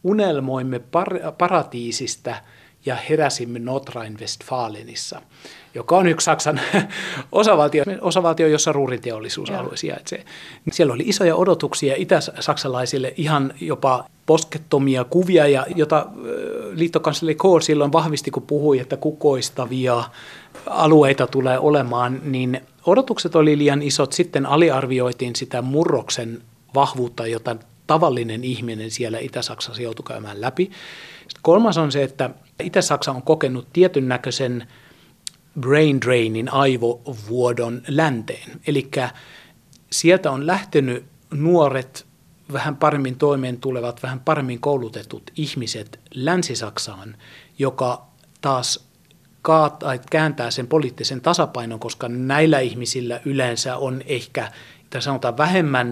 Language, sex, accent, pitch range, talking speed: Finnish, male, native, 125-155 Hz, 105 wpm